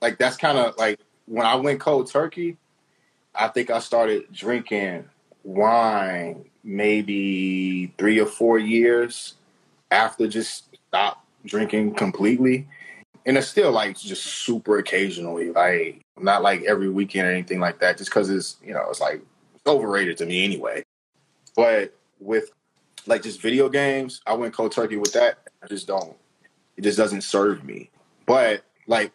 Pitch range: 105-135 Hz